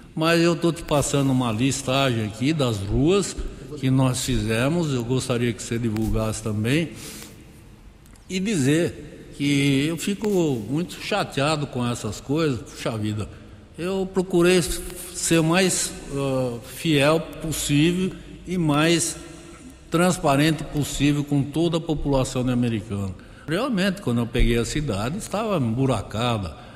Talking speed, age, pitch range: 125 wpm, 60-79, 120-165 Hz